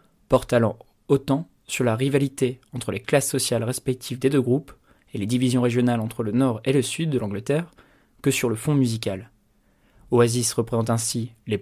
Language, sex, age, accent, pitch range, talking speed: French, male, 20-39, French, 115-135 Hz, 175 wpm